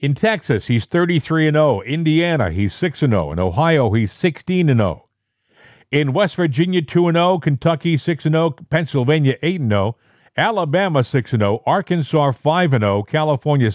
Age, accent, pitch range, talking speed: 50-69, American, 125-165 Hz, 175 wpm